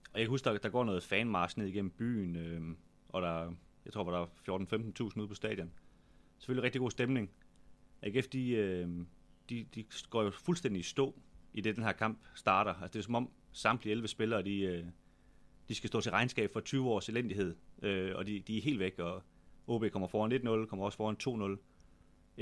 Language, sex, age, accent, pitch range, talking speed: Danish, male, 30-49, native, 90-120 Hz, 205 wpm